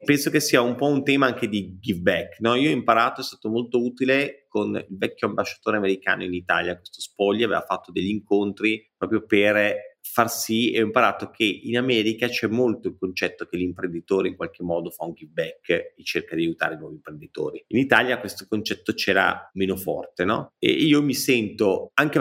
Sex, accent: male, native